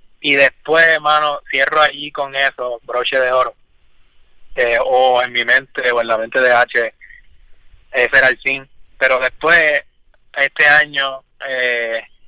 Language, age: Spanish, 20-39